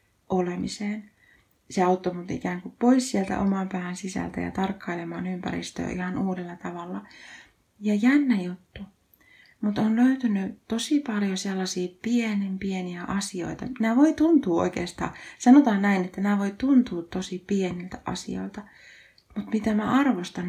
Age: 30-49